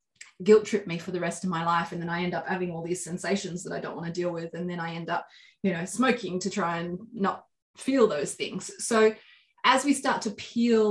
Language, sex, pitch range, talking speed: English, female, 180-215 Hz, 255 wpm